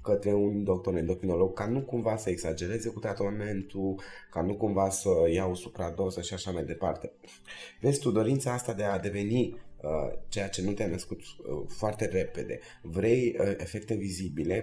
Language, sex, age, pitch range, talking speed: Romanian, male, 20-39, 95-120 Hz, 170 wpm